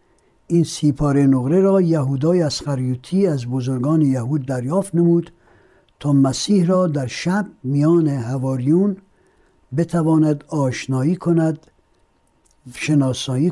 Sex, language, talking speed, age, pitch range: male, Persian, 100 wpm, 60-79, 130-180 Hz